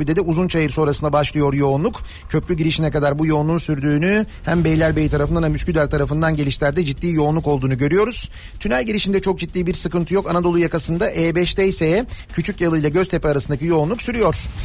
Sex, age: male, 40-59